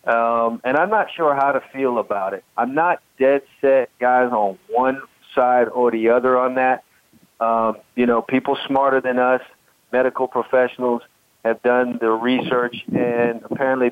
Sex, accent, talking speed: male, American, 165 wpm